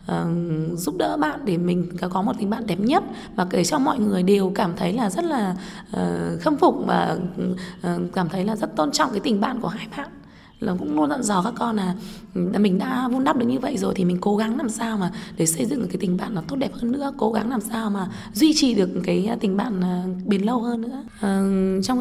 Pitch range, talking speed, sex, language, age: 195-240 Hz, 250 wpm, female, Vietnamese, 20-39